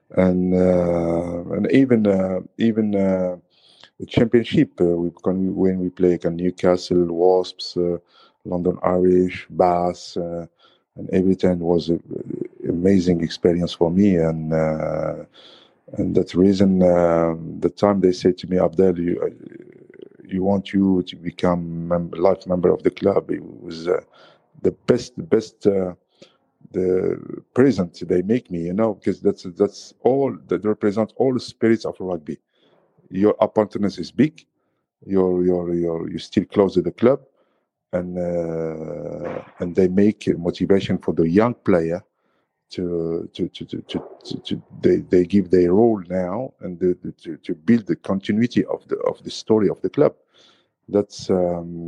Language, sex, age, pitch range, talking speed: English, male, 50-69, 85-100 Hz, 160 wpm